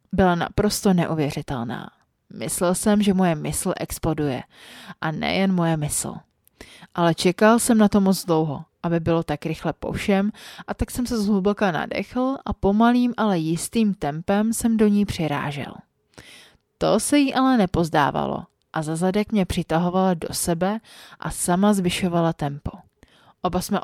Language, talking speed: Czech, 145 wpm